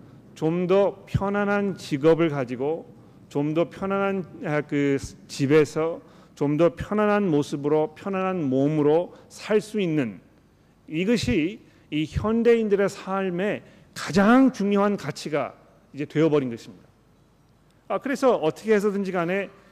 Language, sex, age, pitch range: Korean, male, 40-59, 150-200 Hz